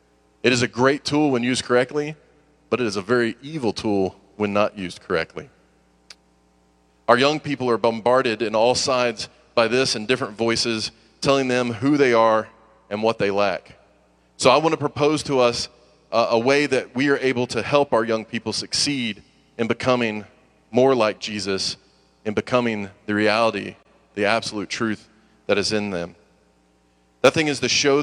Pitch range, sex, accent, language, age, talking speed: 105-135 Hz, male, American, English, 30-49, 175 wpm